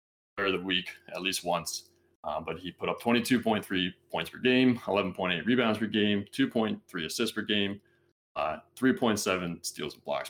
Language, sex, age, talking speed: English, male, 20-39, 165 wpm